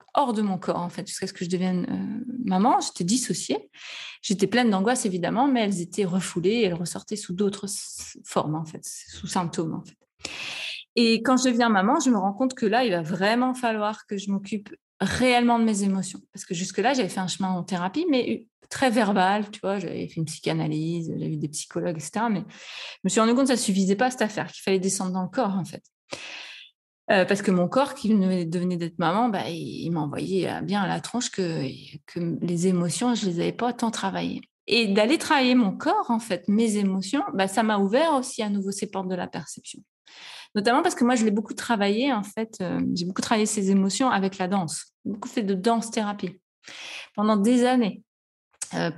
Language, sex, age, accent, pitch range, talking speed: French, female, 20-39, French, 185-240 Hz, 215 wpm